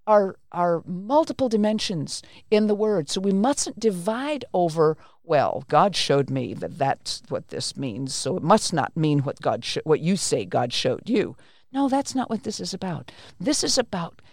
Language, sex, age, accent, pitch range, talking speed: English, female, 50-69, American, 170-235 Hz, 185 wpm